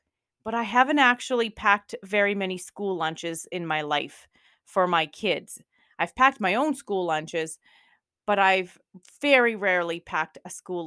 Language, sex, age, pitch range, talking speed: English, female, 30-49, 185-235 Hz, 155 wpm